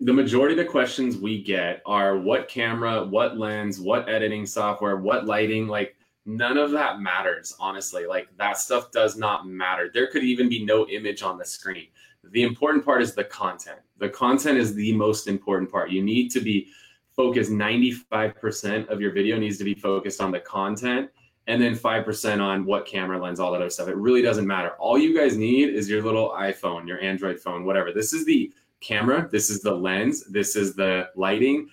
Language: English